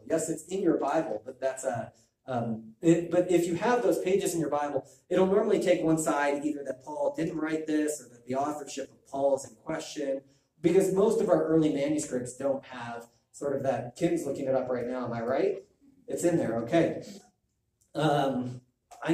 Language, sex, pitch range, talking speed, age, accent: English, male, 130-165 Hz, 205 wpm, 30-49, American